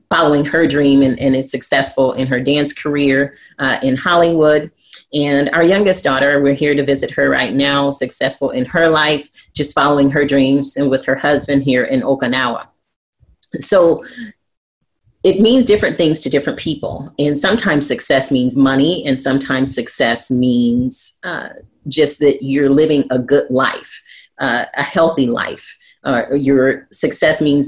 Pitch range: 135-160 Hz